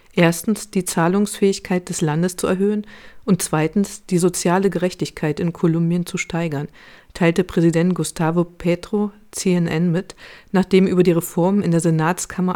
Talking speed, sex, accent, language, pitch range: 140 wpm, female, German, German, 165-195 Hz